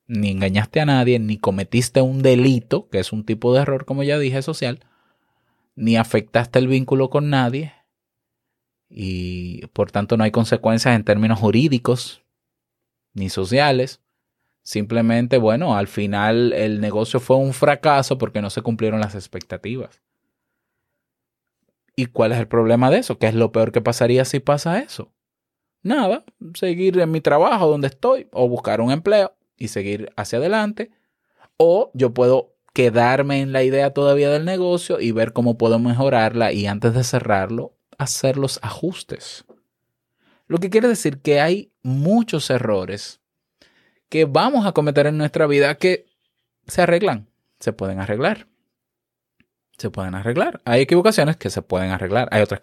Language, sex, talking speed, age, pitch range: Spanish, male, 155 wpm, 20-39, 110-140 Hz